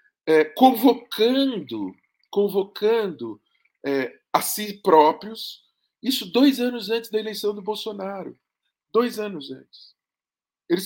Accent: Brazilian